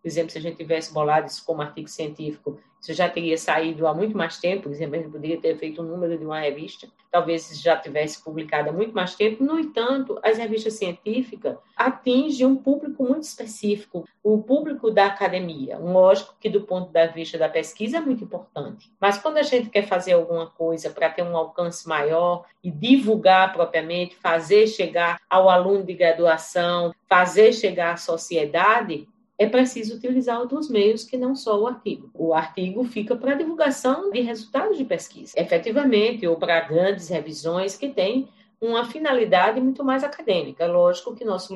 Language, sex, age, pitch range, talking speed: Portuguese, female, 40-59, 170-240 Hz, 180 wpm